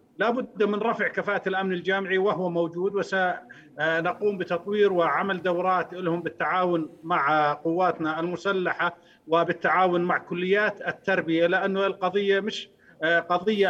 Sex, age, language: male, 50-69, Arabic